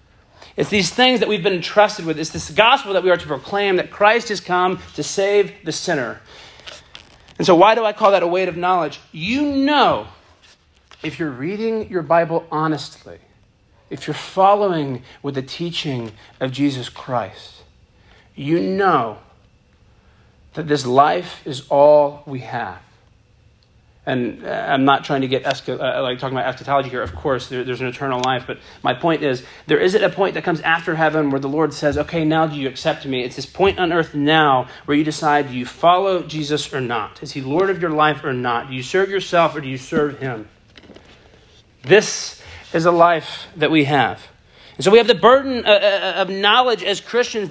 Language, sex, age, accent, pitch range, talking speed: English, male, 40-59, American, 135-195 Hz, 190 wpm